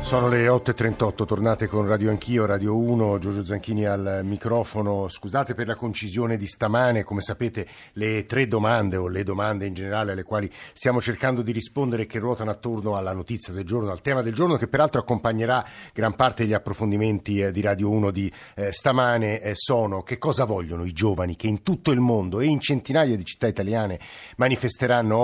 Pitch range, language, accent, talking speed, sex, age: 100-120 Hz, Italian, native, 185 wpm, male, 50-69